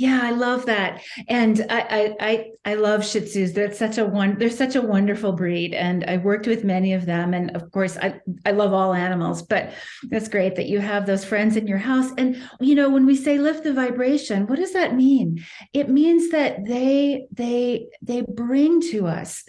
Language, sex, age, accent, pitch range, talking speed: English, female, 40-59, American, 195-260 Hz, 210 wpm